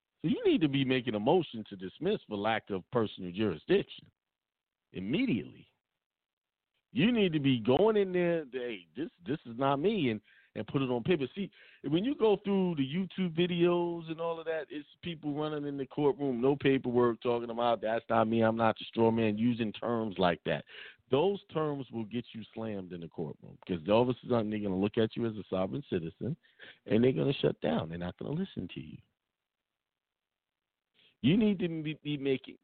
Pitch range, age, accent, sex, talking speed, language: 95-145 Hz, 50-69, American, male, 200 wpm, English